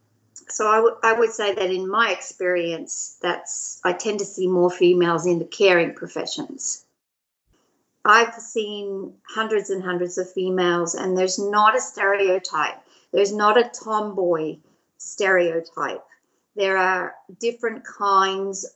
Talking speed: 130 wpm